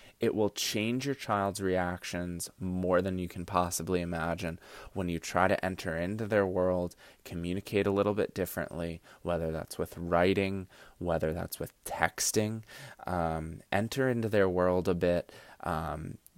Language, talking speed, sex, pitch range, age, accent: English, 150 wpm, male, 90-115 Hz, 20-39, American